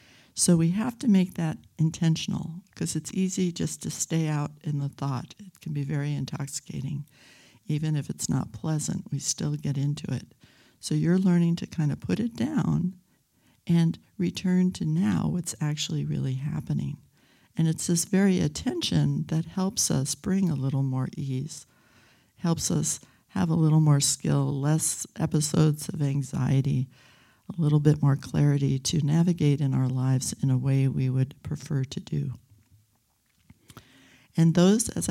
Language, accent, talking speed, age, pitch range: English, American, 160 wpm, 60-79, 140-175 Hz